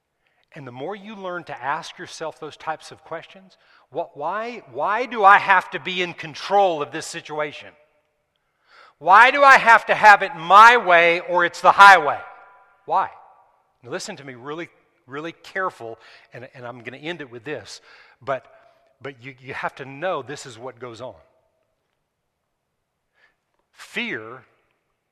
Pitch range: 145-180 Hz